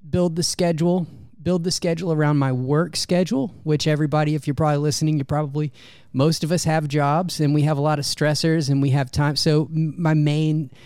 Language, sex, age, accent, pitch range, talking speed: English, male, 30-49, American, 130-160 Hz, 205 wpm